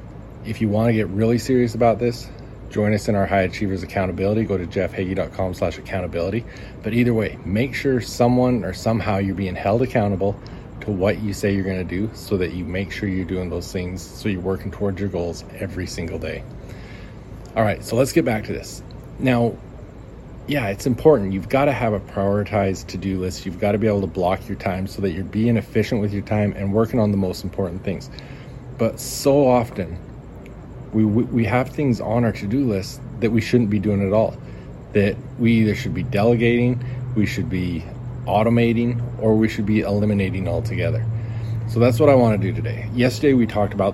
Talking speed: 200 wpm